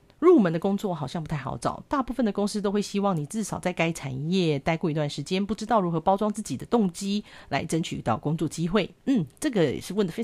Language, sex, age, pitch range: Chinese, female, 40-59, 155-210 Hz